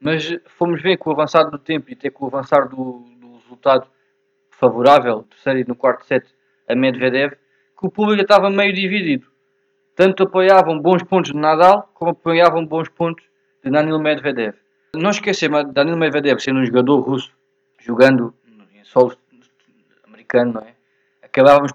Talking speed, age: 160 wpm, 20-39